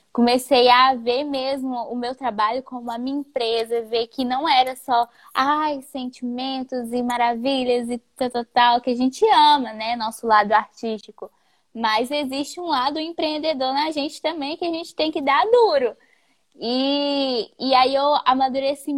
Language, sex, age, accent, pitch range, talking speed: Portuguese, female, 10-29, Brazilian, 235-295 Hz, 160 wpm